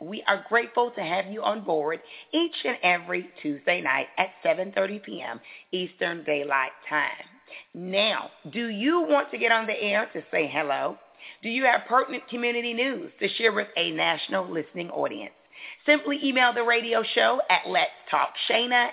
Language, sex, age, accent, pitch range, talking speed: English, female, 40-59, American, 185-245 Hz, 170 wpm